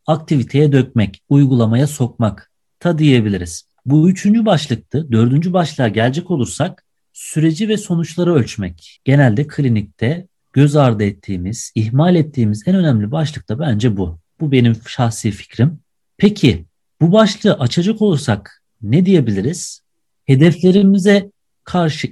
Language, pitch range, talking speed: Turkish, 120-175 Hz, 115 wpm